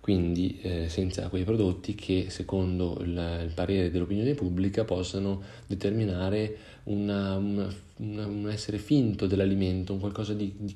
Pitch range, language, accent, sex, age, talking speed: 90-105 Hz, Italian, native, male, 30-49, 140 wpm